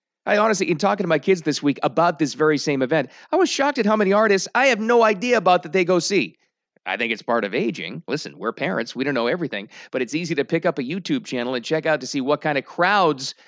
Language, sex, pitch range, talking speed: English, male, 150-200 Hz, 270 wpm